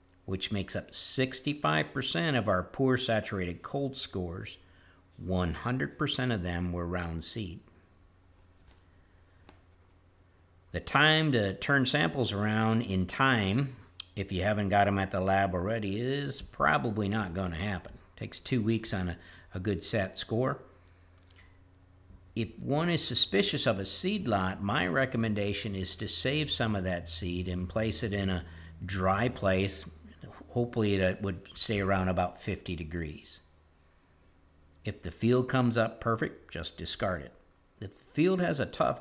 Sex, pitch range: male, 90-115 Hz